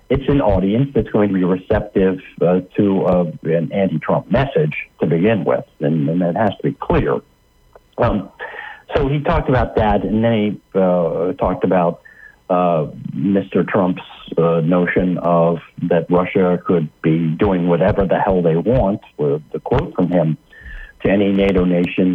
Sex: male